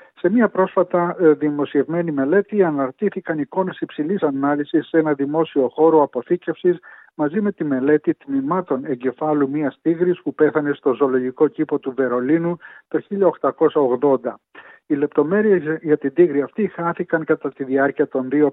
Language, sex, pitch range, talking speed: Greek, male, 140-170 Hz, 140 wpm